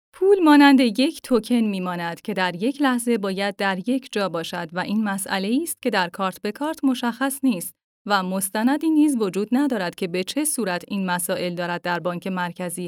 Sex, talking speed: female, 185 wpm